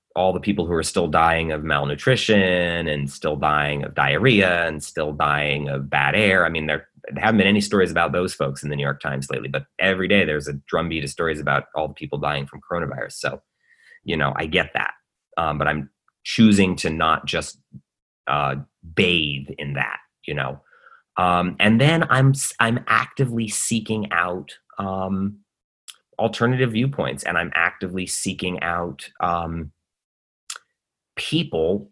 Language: English